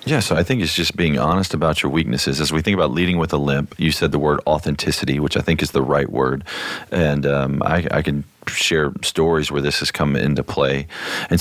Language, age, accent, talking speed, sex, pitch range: English, 40-59, American, 235 wpm, male, 70-80 Hz